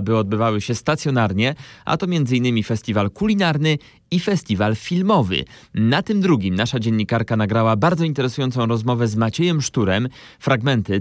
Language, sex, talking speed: Polish, male, 135 wpm